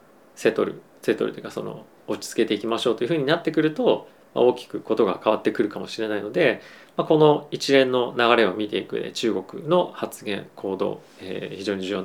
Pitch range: 105-140 Hz